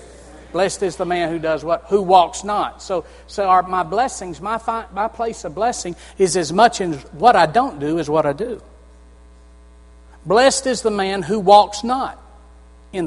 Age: 50-69